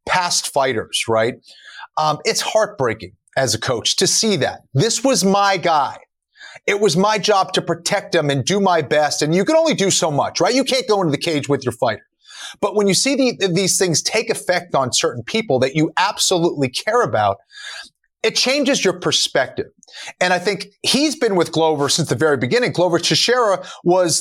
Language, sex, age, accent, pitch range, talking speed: English, male, 30-49, American, 150-220 Hz, 195 wpm